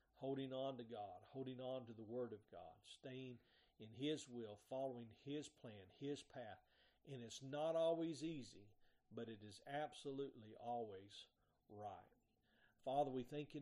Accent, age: American, 40-59